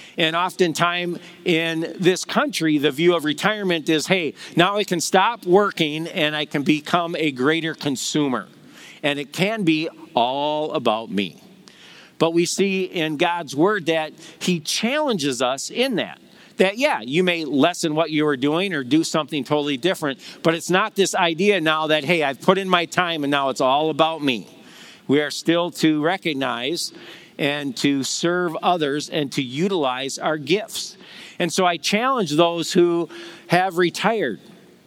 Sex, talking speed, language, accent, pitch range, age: male, 165 wpm, English, American, 150-185 Hz, 50-69